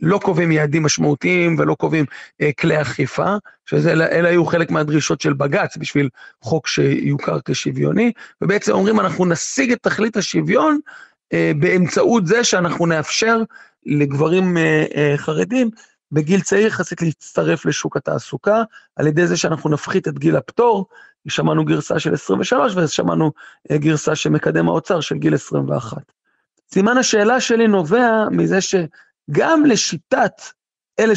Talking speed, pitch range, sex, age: 135 wpm, 155-200 Hz, male, 40-59